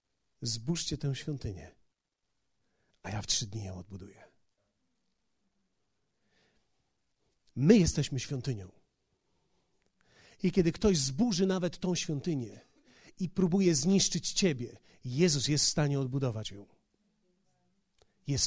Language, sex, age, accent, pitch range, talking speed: Polish, male, 40-59, native, 135-200 Hz, 100 wpm